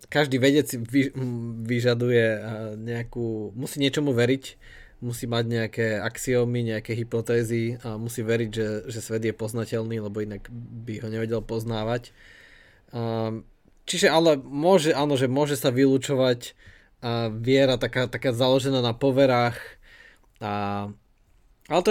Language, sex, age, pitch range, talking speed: Slovak, male, 20-39, 115-135 Hz, 120 wpm